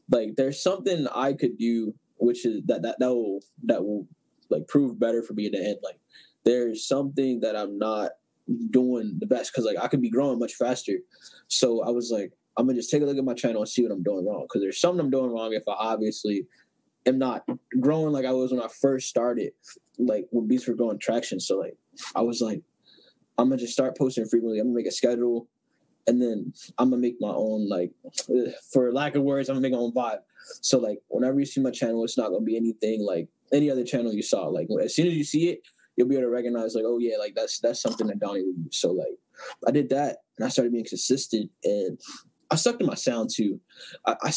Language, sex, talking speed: English, male, 245 wpm